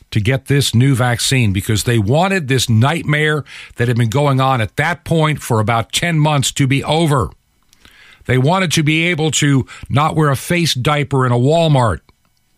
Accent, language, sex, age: American, English, male, 50-69